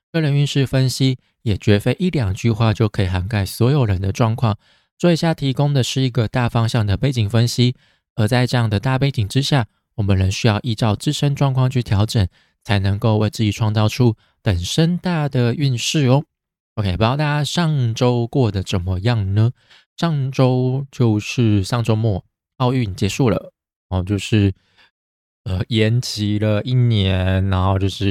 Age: 20-39